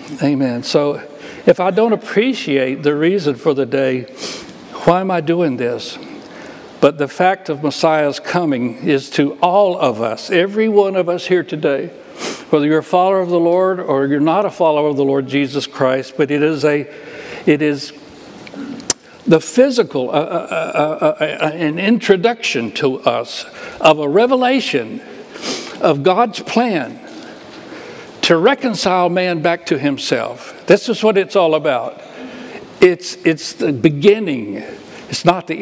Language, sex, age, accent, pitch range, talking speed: English, male, 60-79, American, 145-195 Hz, 155 wpm